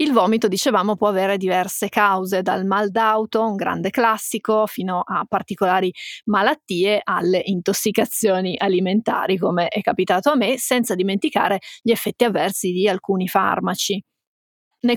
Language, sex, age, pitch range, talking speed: Italian, female, 30-49, 195-225 Hz, 135 wpm